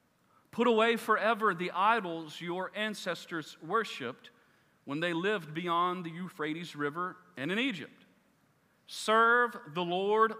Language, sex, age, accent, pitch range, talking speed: English, male, 40-59, American, 140-230 Hz, 120 wpm